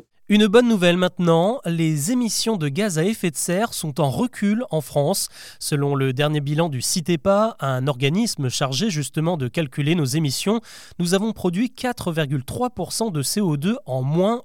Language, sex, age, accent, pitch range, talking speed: French, male, 20-39, French, 140-200 Hz, 160 wpm